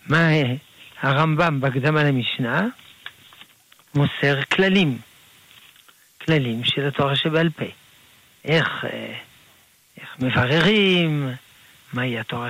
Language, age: Hebrew, 60-79